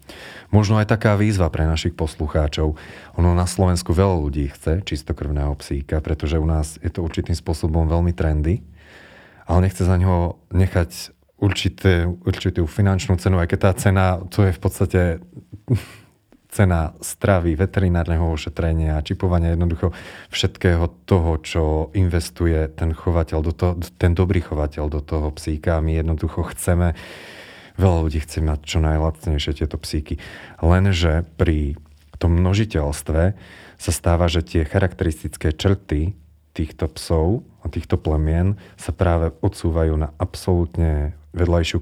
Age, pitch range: 30-49, 80-95 Hz